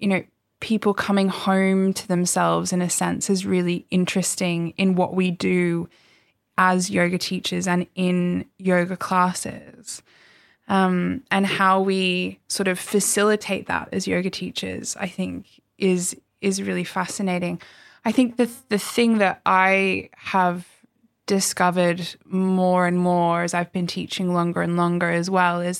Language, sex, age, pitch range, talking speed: English, female, 10-29, 175-195 Hz, 150 wpm